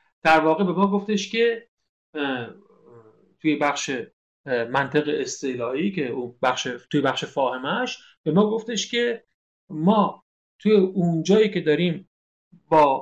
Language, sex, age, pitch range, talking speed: Persian, male, 50-69, 155-215 Hz, 105 wpm